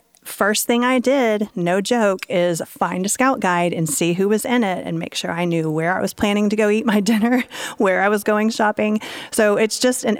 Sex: female